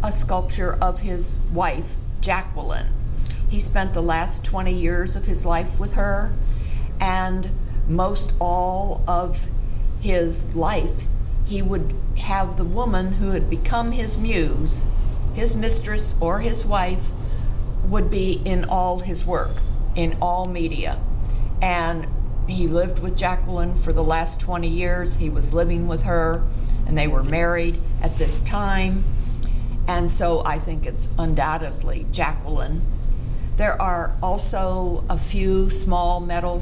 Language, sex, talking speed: English, female, 135 wpm